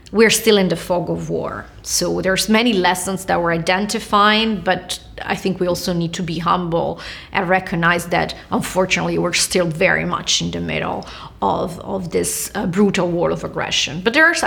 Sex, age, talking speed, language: female, 30-49, 185 wpm, Swedish